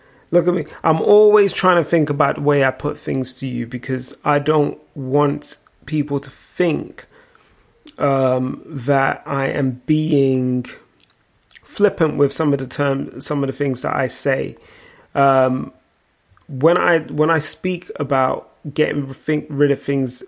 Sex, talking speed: male, 155 wpm